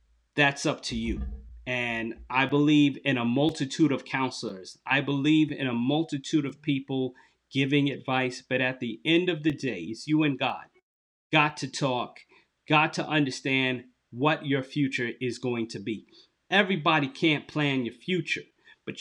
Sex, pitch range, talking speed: male, 130-175 Hz, 160 wpm